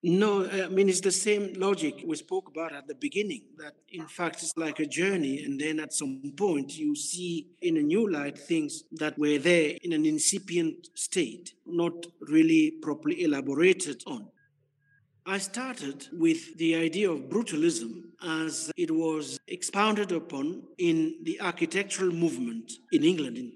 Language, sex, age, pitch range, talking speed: English, male, 50-69, 165-265 Hz, 160 wpm